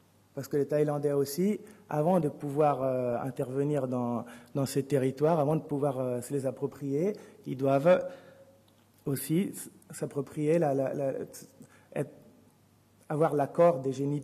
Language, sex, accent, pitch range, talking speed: French, male, French, 125-145 Hz, 140 wpm